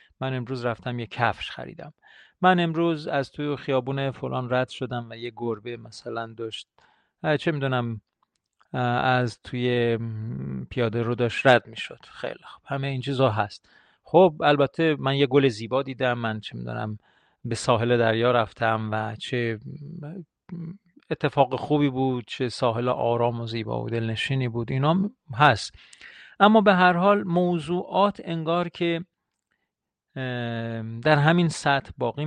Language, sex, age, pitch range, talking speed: Persian, male, 40-59, 115-145 Hz, 140 wpm